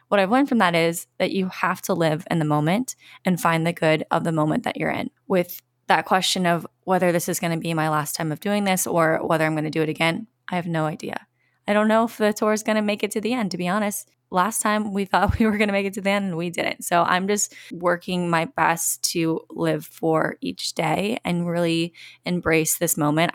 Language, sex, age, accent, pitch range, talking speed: English, female, 20-39, American, 160-190 Hz, 260 wpm